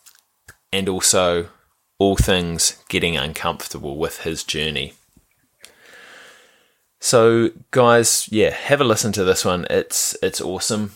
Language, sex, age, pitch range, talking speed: English, male, 20-39, 80-105 Hz, 115 wpm